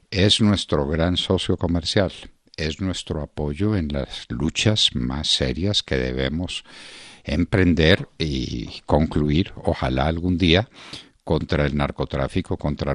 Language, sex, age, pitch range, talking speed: Spanish, male, 60-79, 75-105 Hz, 115 wpm